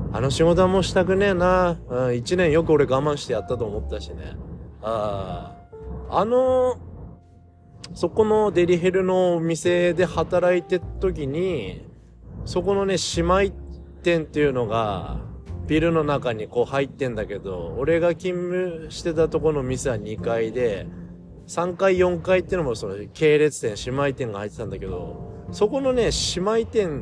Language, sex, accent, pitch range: Japanese, male, native, 100-165 Hz